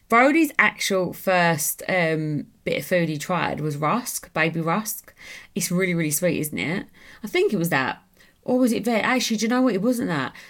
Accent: British